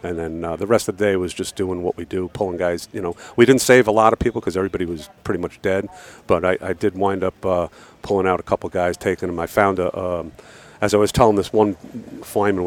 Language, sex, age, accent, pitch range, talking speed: English, male, 50-69, American, 95-115 Hz, 265 wpm